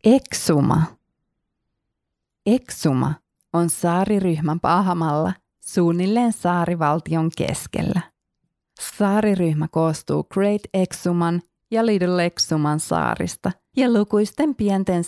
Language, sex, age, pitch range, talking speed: Finnish, female, 30-49, 165-200 Hz, 75 wpm